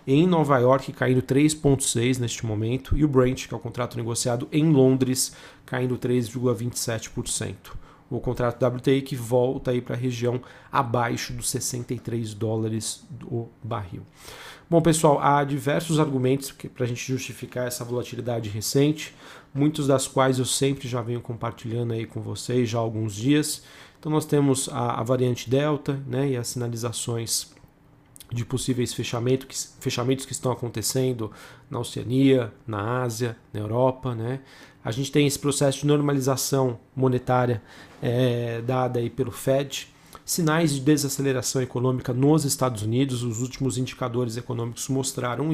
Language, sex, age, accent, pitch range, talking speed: Portuguese, male, 40-59, Brazilian, 120-140 Hz, 140 wpm